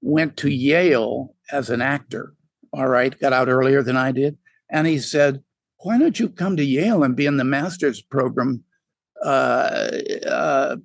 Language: English